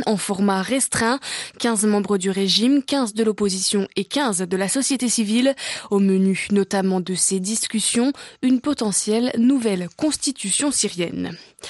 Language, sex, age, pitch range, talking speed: French, female, 20-39, 215-270 Hz, 140 wpm